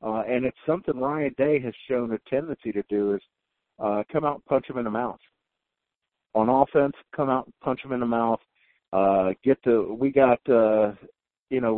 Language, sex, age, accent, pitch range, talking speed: English, male, 50-69, American, 105-125 Hz, 205 wpm